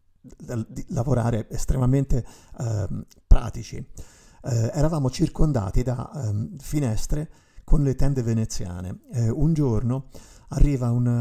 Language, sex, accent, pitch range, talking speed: Italian, male, native, 110-135 Hz, 105 wpm